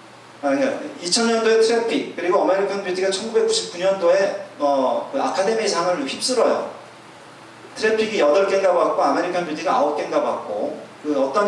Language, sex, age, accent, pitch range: Korean, male, 40-59, native, 160-210 Hz